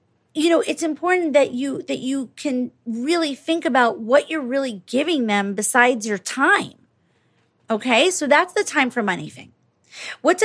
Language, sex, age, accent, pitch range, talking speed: English, female, 30-49, American, 195-260 Hz, 165 wpm